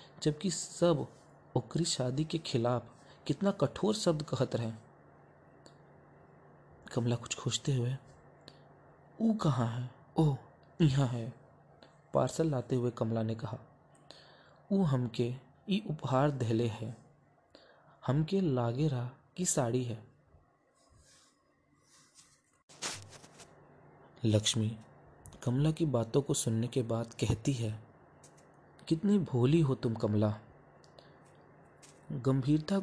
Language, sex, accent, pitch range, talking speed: Hindi, male, native, 115-155 Hz, 100 wpm